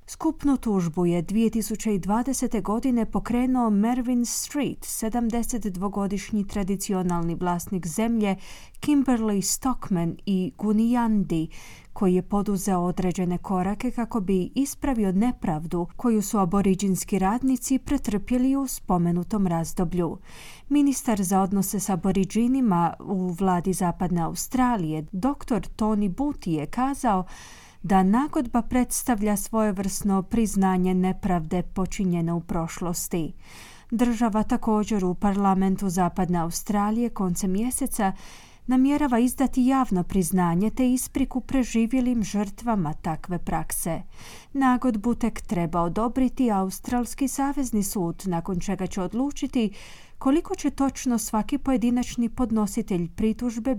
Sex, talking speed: female, 105 wpm